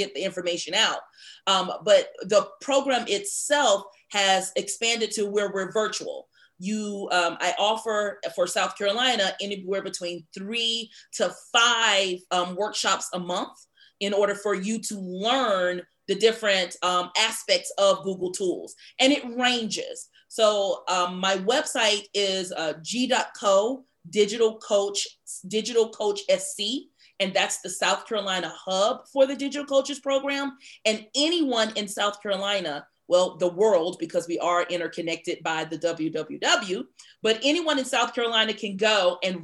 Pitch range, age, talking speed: 190-230 Hz, 30-49, 140 wpm